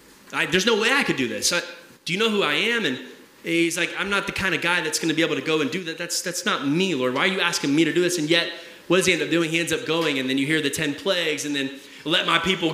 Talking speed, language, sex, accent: 335 wpm, English, male, American